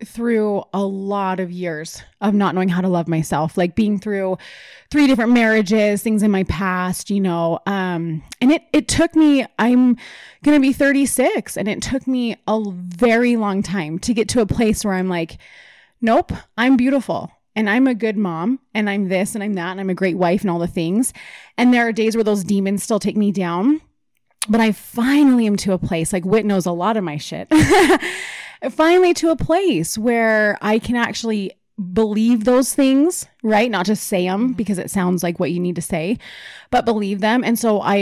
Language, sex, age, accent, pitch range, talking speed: English, female, 20-39, American, 185-235 Hz, 205 wpm